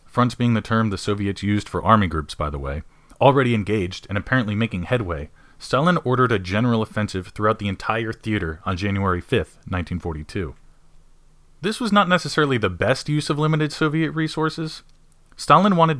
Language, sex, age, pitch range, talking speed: English, male, 30-49, 95-130 Hz, 170 wpm